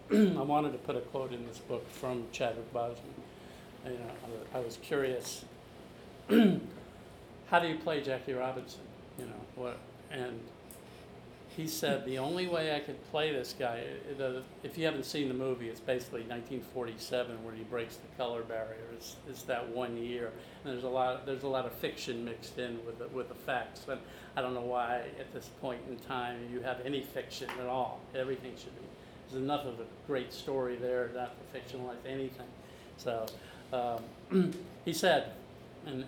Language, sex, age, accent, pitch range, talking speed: English, male, 50-69, American, 115-130 Hz, 185 wpm